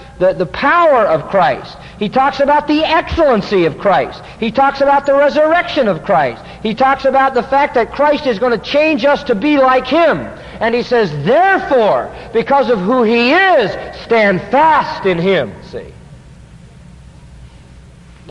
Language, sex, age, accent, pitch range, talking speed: English, male, 50-69, American, 195-285 Hz, 160 wpm